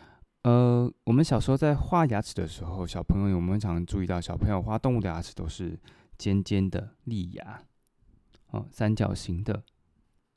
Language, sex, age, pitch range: Chinese, male, 20-39, 90-115 Hz